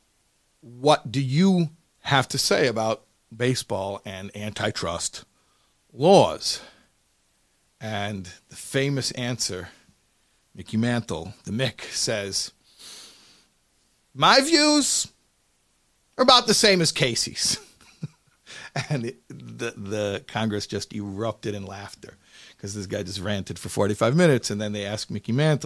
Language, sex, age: English, male, 50-69